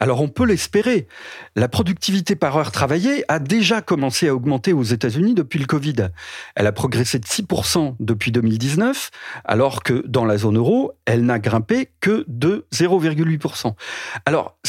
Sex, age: male, 40-59